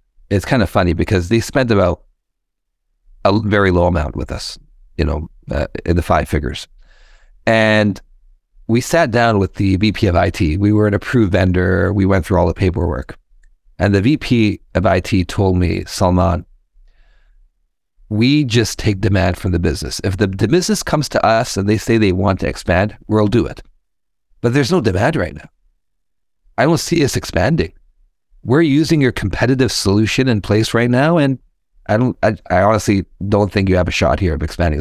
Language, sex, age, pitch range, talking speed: English, male, 40-59, 90-110 Hz, 185 wpm